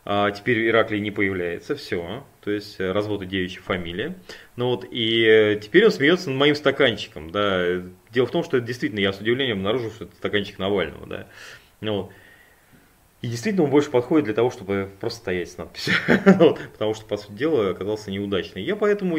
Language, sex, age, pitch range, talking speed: Russian, male, 20-39, 95-125 Hz, 180 wpm